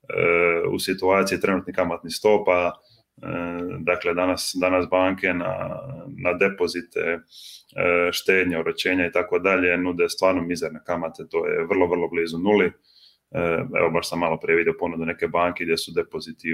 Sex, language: male, Croatian